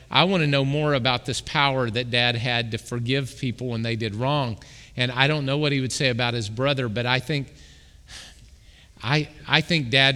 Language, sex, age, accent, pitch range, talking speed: English, male, 40-59, American, 115-150 Hz, 215 wpm